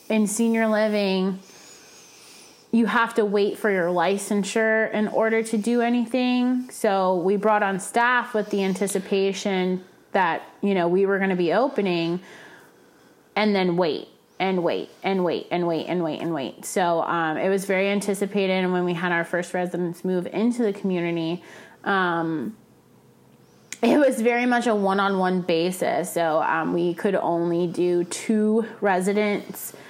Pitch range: 175-210 Hz